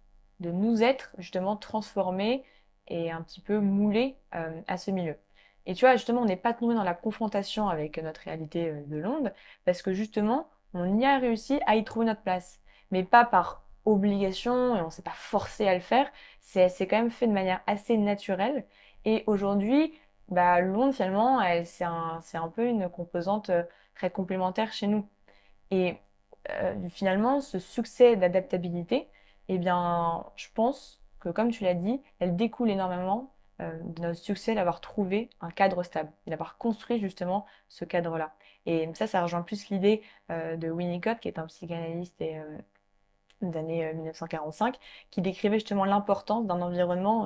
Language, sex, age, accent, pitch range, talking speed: French, female, 20-39, French, 170-220 Hz, 170 wpm